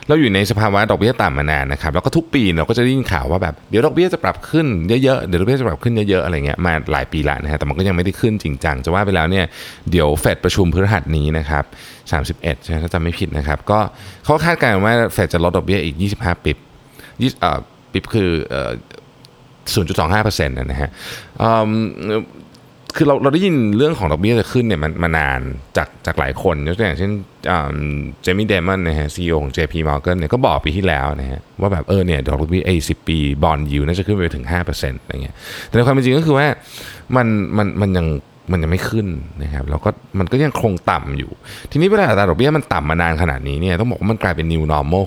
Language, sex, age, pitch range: Thai, male, 20-39, 80-115 Hz